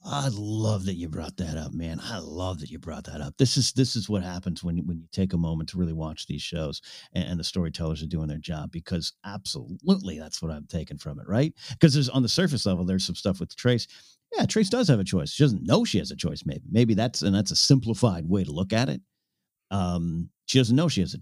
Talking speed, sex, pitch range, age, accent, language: 260 wpm, male, 90-125 Hz, 50-69, American, English